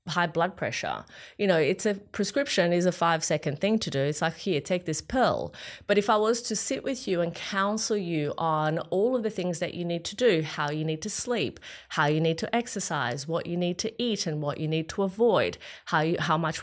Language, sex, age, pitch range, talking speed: English, female, 30-49, 155-200 Hz, 240 wpm